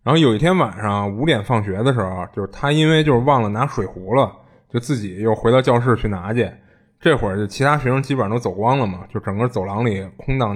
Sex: male